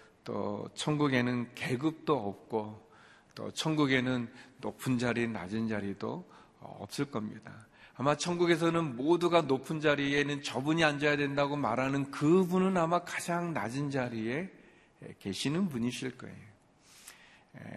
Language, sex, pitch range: Korean, male, 115-150 Hz